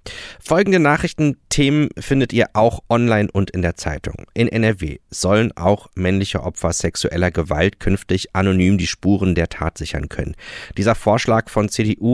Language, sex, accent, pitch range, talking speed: German, male, German, 90-110 Hz, 150 wpm